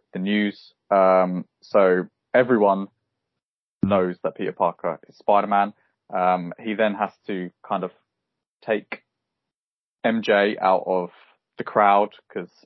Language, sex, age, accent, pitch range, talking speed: English, male, 20-39, British, 95-110 Hz, 120 wpm